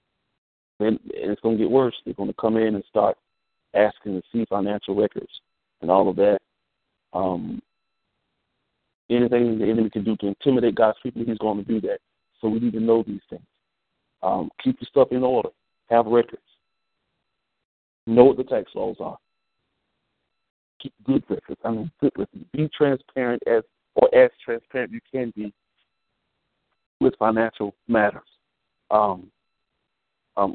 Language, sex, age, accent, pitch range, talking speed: English, male, 40-59, American, 105-130 Hz, 150 wpm